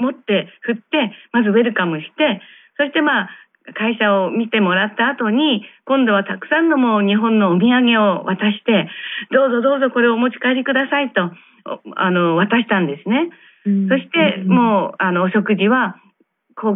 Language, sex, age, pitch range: Japanese, female, 40-59, 195-260 Hz